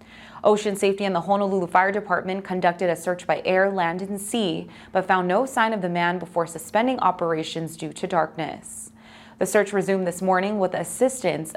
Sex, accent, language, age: female, American, English, 20-39